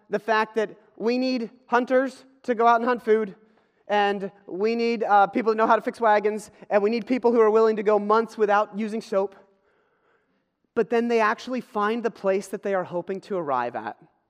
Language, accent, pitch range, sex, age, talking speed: English, American, 195-235 Hz, male, 30-49, 210 wpm